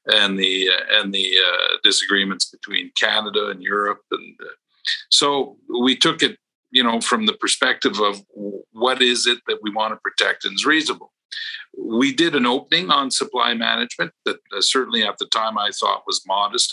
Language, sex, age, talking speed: English, male, 50-69, 185 wpm